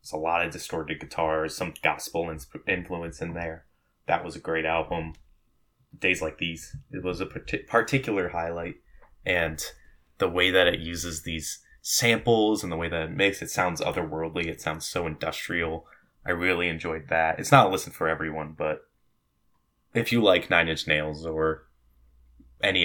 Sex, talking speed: male, 175 wpm